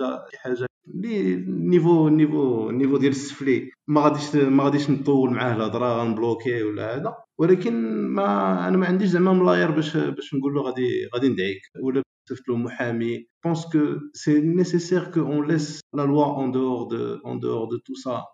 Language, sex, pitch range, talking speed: French, male, 115-140 Hz, 105 wpm